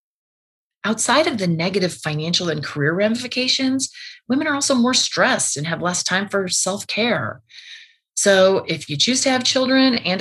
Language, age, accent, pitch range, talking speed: English, 30-49, American, 150-240 Hz, 160 wpm